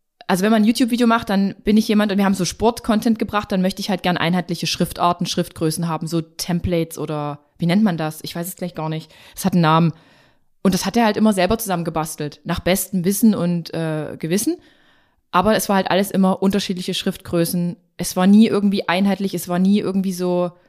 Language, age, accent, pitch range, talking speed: German, 20-39, German, 170-210 Hz, 215 wpm